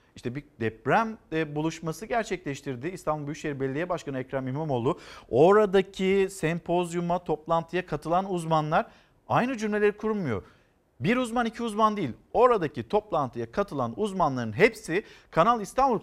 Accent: native